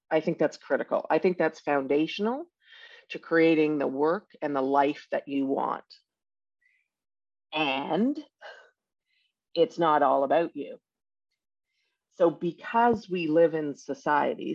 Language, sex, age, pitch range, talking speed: English, female, 50-69, 145-205 Hz, 125 wpm